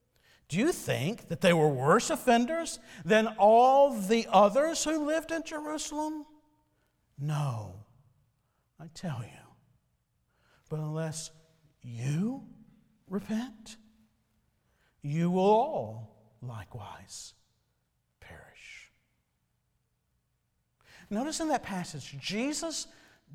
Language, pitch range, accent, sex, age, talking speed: English, 160-235 Hz, American, male, 50-69, 85 wpm